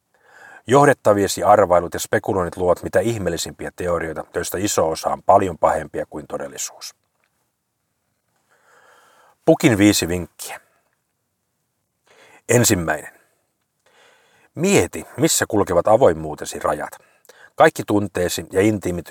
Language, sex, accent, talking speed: Finnish, male, native, 90 wpm